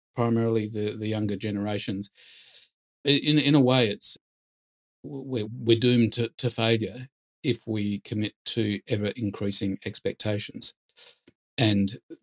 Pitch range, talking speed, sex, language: 100-120 Hz, 115 wpm, male, English